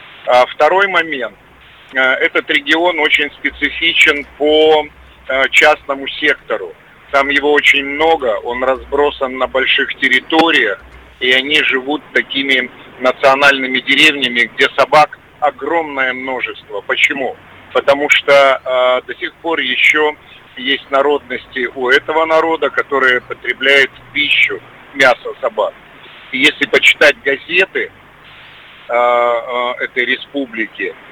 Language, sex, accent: Russian, male, native